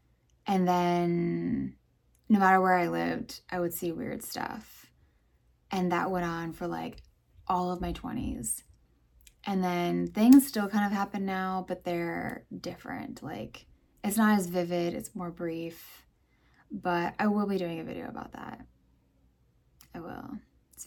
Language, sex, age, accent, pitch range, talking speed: English, female, 10-29, American, 170-225 Hz, 150 wpm